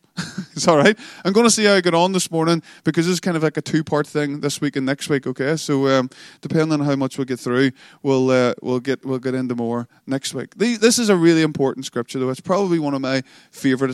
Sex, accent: male, Irish